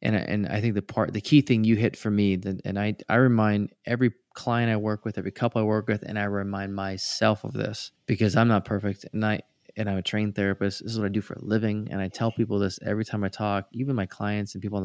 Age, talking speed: 20-39, 285 wpm